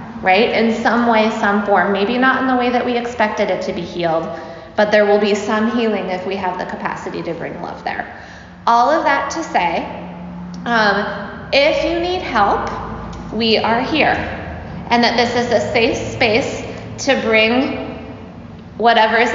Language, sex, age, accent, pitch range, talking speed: English, female, 20-39, American, 205-255 Hz, 175 wpm